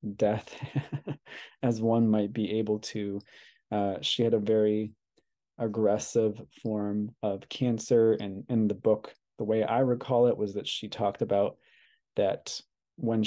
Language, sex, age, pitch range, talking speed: English, male, 20-39, 100-115 Hz, 145 wpm